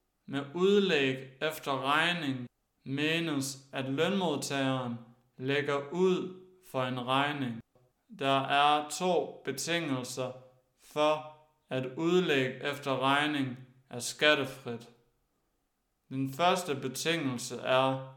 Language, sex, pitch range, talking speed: Danish, male, 125-145 Hz, 90 wpm